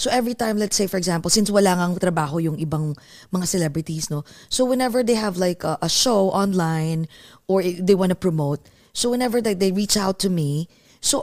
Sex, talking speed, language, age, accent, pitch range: female, 210 wpm, Filipino, 20-39, native, 175-250 Hz